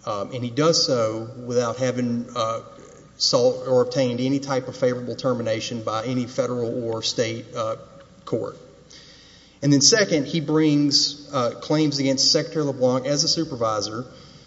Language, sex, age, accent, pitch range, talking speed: English, male, 30-49, American, 120-145 Hz, 150 wpm